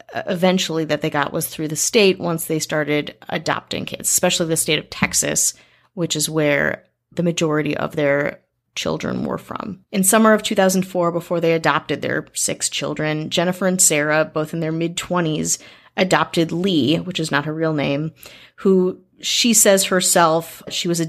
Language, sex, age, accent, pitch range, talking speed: English, female, 30-49, American, 155-185 Hz, 170 wpm